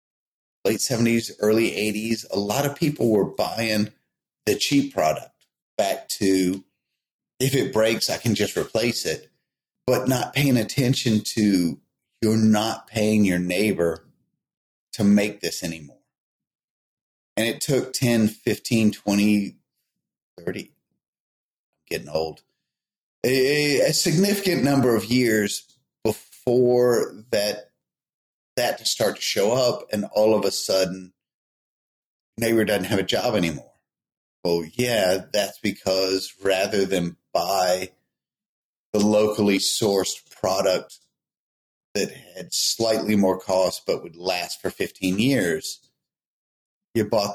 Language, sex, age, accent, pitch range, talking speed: English, male, 30-49, American, 95-125 Hz, 120 wpm